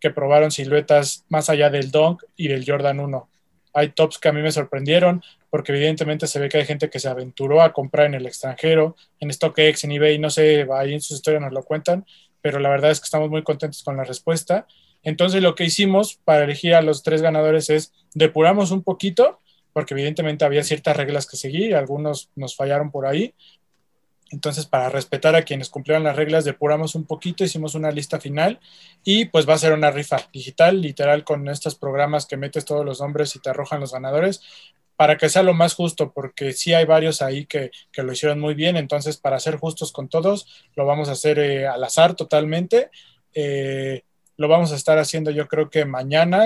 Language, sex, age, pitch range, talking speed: Spanish, male, 20-39, 140-160 Hz, 210 wpm